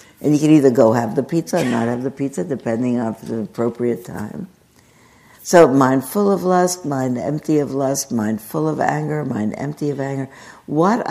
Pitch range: 125-155 Hz